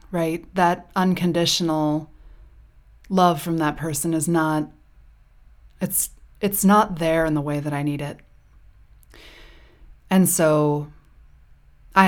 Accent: American